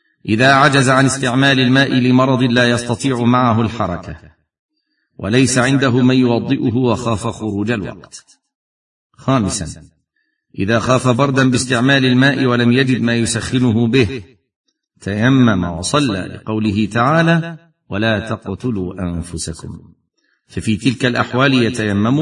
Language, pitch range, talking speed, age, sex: Arabic, 110-135 Hz, 105 wpm, 50-69, male